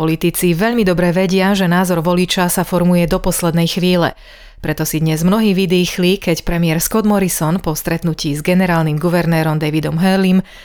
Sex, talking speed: female, 160 wpm